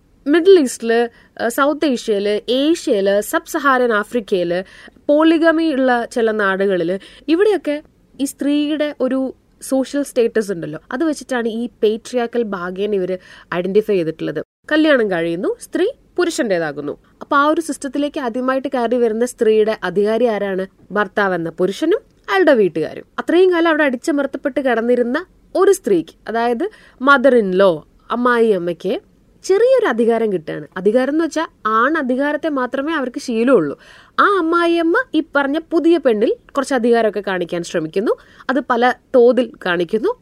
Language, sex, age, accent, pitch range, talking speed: Malayalam, female, 20-39, native, 220-315 Hz, 120 wpm